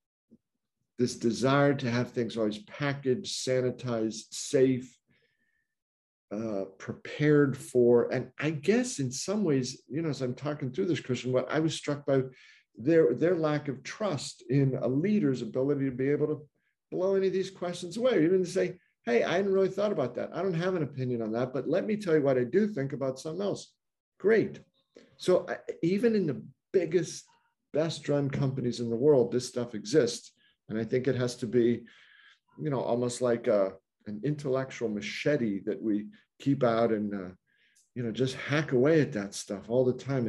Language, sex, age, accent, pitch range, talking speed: English, male, 50-69, American, 115-150 Hz, 185 wpm